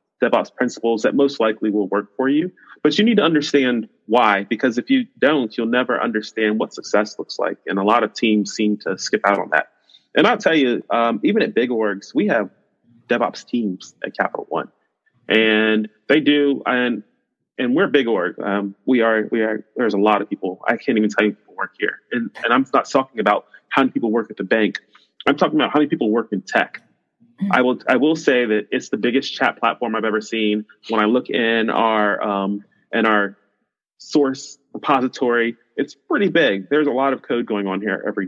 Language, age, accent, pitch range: English, 30-49, American, 110-140 Hz